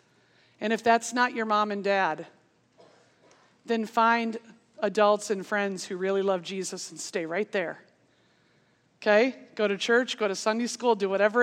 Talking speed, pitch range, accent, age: 165 wpm, 200-250 Hz, American, 40-59